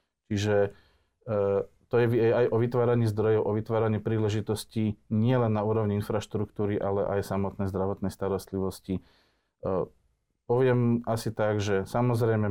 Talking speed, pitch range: 125 wpm, 100-115 Hz